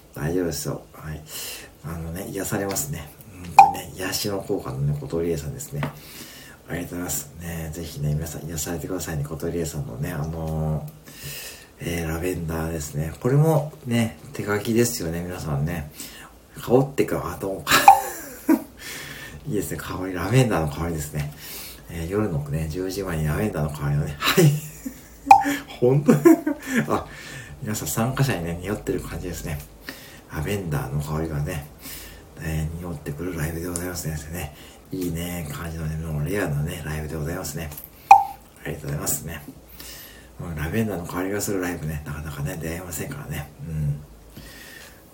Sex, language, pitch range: male, Japanese, 80-120 Hz